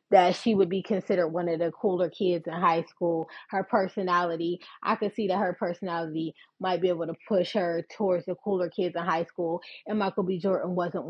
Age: 20-39